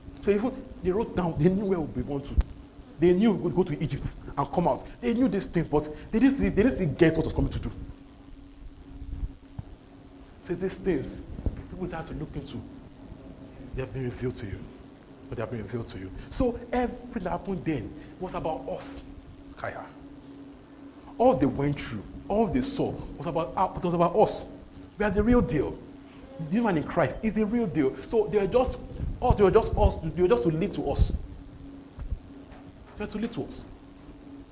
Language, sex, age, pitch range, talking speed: English, male, 40-59, 120-180 Hz, 205 wpm